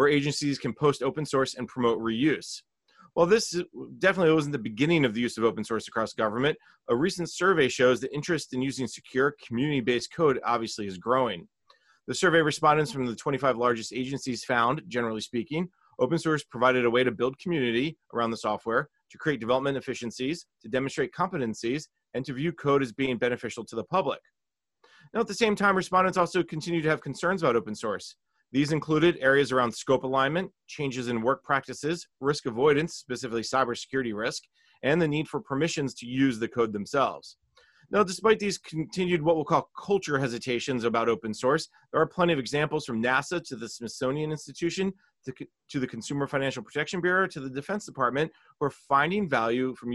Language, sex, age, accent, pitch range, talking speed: English, male, 30-49, American, 125-165 Hz, 185 wpm